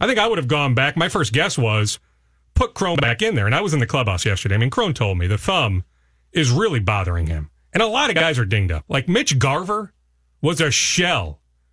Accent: American